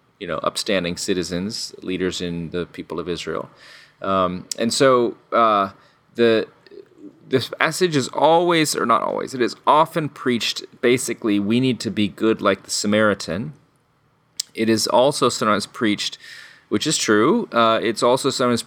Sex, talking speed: male, 150 wpm